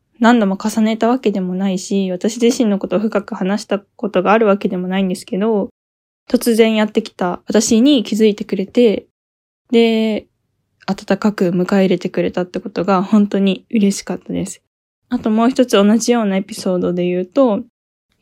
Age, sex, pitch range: 10-29, female, 185-225 Hz